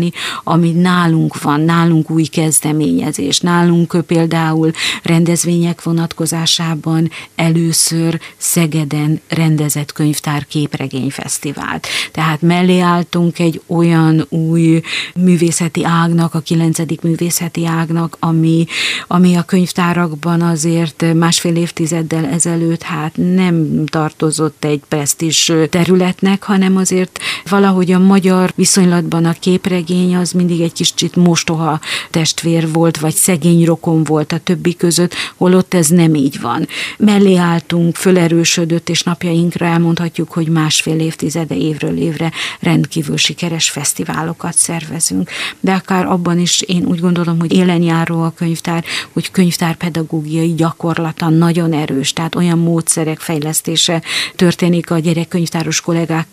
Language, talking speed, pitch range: Hungarian, 115 wpm, 160-175 Hz